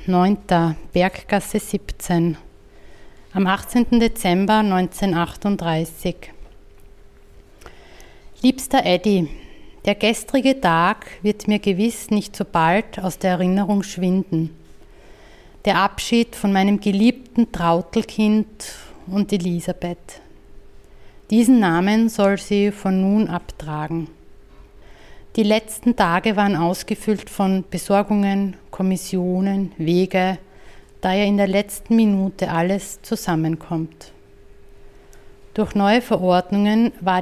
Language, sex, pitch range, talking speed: German, female, 170-210 Hz, 95 wpm